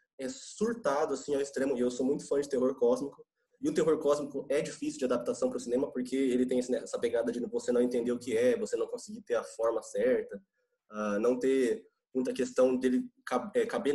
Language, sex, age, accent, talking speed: Portuguese, male, 20-39, Brazilian, 210 wpm